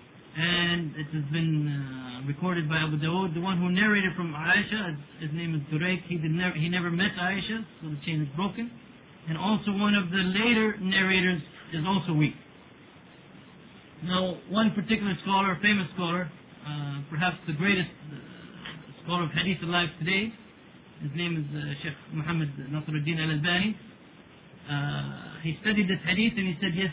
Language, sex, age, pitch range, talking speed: English, male, 30-49, 165-205 Hz, 165 wpm